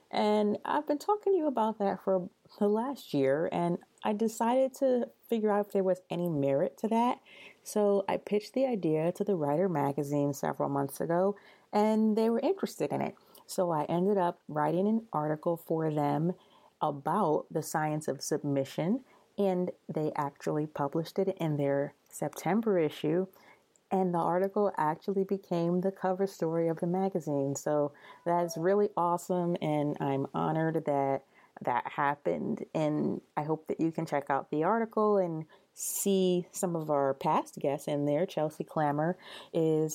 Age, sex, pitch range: 30-49, female, 150-205 Hz